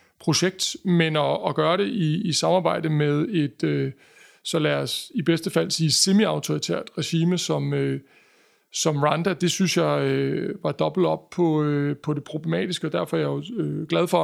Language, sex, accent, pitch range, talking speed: Danish, male, native, 150-185 Hz, 190 wpm